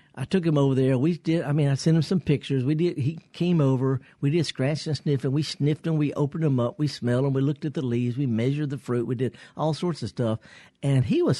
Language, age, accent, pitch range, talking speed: English, 60-79, American, 120-160 Hz, 275 wpm